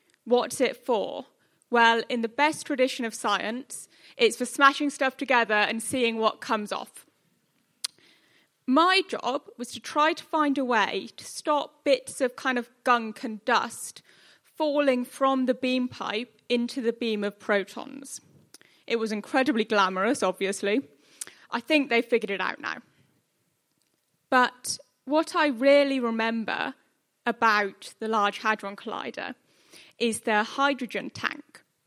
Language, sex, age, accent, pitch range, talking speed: English, female, 10-29, British, 225-285 Hz, 140 wpm